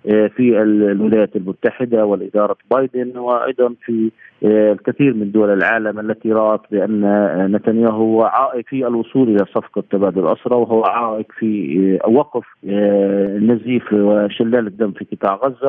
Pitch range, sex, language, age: 100-120 Hz, male, Arabic, 40-59